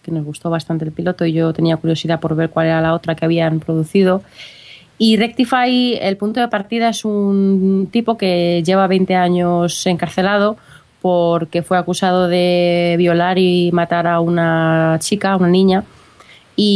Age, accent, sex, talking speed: 20-39, Spanish, female, 170 wpm